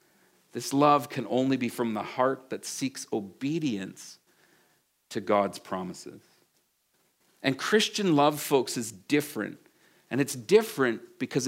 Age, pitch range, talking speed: 50-69, 135-205 Hz, 125 wpm